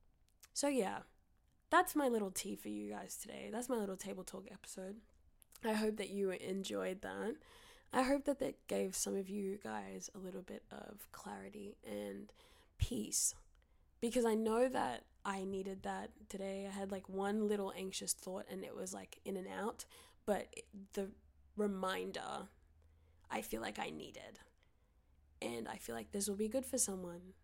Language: English